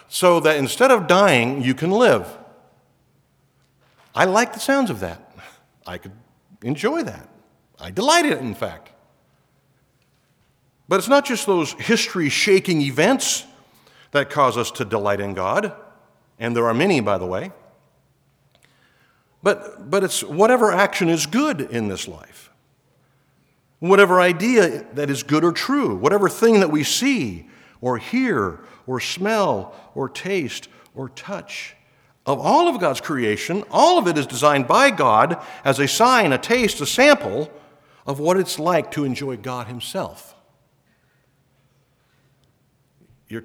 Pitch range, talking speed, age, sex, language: 130-195 Hz, 140 wpm, 50-69, male, English